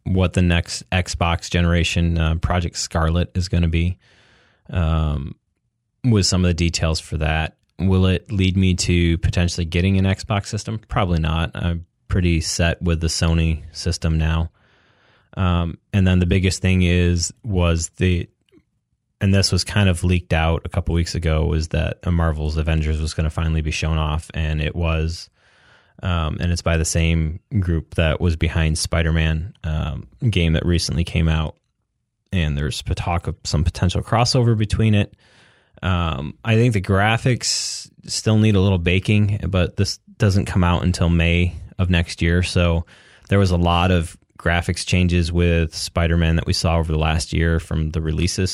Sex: male